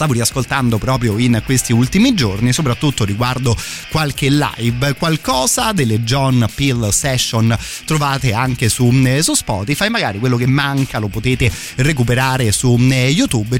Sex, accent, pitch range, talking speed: male, native, 115-145 Hz, 130 wpm